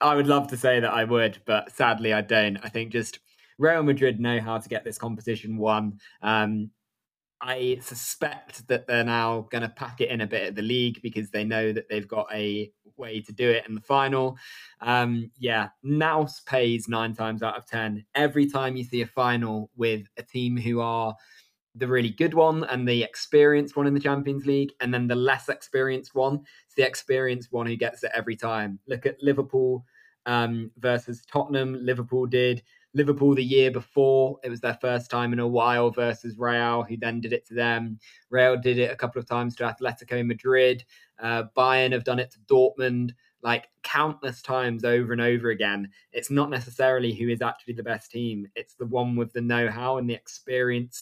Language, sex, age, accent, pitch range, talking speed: English, male, 20-39, British, 115-130 Hz, 200 wpm